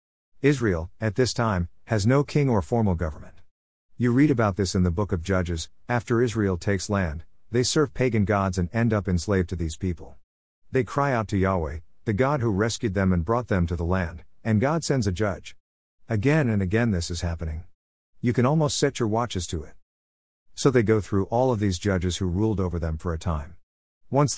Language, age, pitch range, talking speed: English, 50-69, 85-125 Hz, 210 wpm